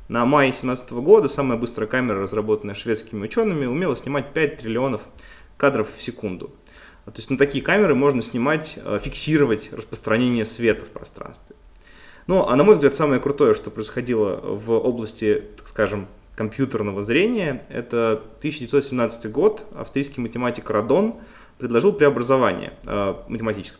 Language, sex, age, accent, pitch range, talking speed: Russian, male, 20-39, native, 110-155 Hz, 135 wpm